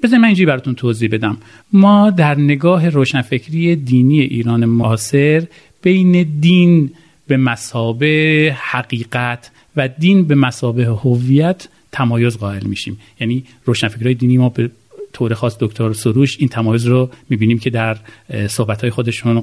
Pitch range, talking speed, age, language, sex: 120-160 Hz, 125 wpm, 40-59, Persian, male